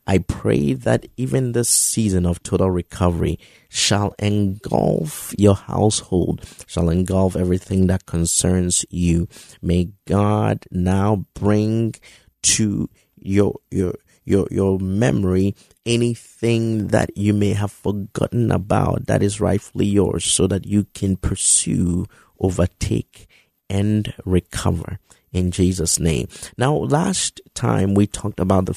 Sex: male